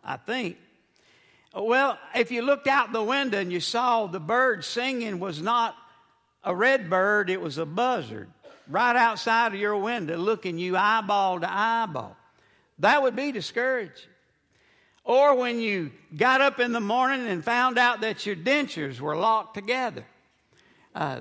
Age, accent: 60-79, American